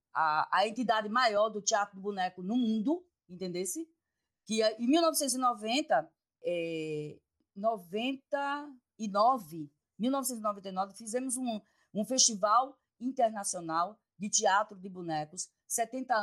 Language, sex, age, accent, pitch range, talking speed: Portuguese, female, 20-39, Brazilian, 185-245 Hz, 100 wpm